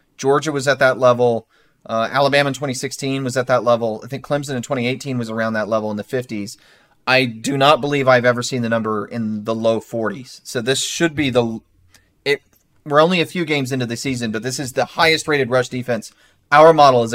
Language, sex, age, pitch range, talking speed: English, male, 30-49, 115-145 Hz, 215 wpm